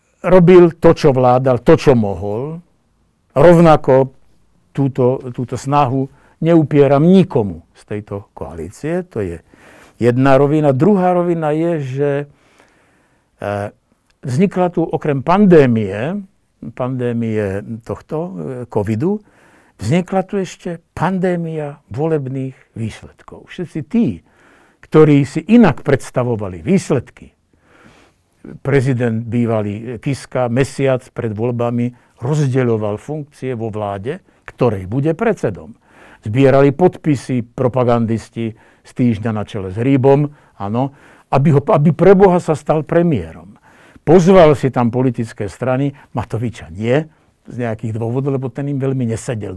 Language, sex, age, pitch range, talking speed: Slovak, male, 60-79, 115-165 Hz, 105 wpm